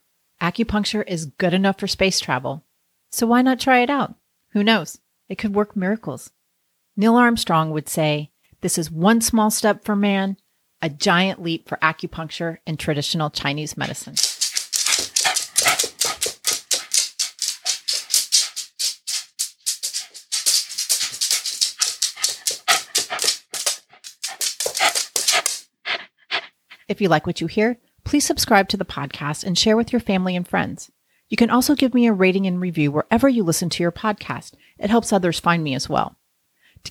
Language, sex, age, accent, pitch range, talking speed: English, female, 30-49, American, 165-215 Hz, 130 wpm